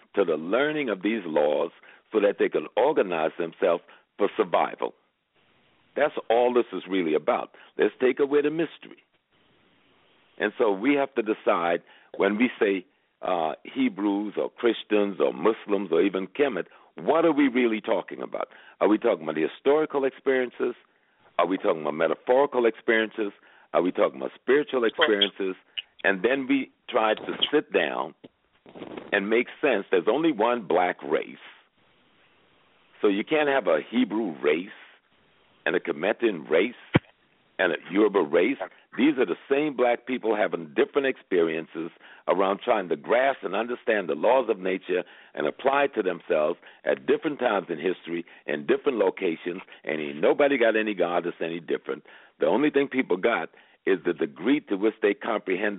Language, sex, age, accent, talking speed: English, male, 60-79, American, 160 wpm